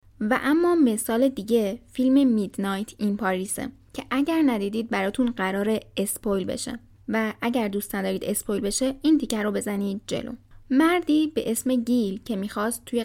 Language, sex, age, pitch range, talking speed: Persian, female, 10-29, 210-270 Hz, 150 wpm